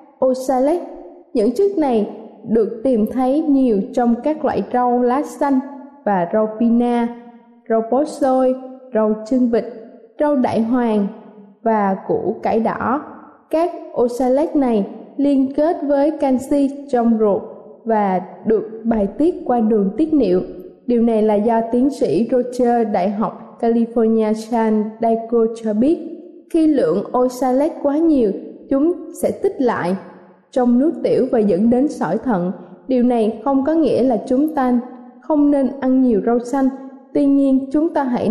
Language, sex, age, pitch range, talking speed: Vietnamese, female, 20-39, 225-280 Hz, 150 wpm